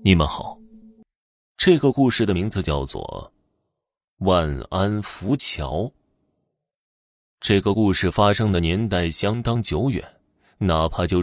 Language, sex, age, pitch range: Chinese, male, 30-49, 85-125 Hz